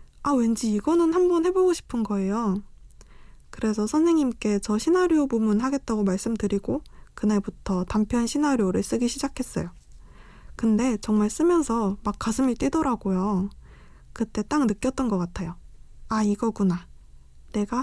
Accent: native